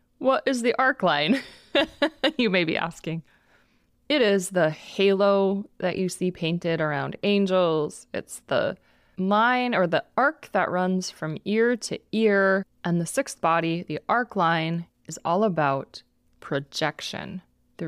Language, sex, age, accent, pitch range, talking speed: English, female, 20-39, American, 160-200 Hz, 145 wpm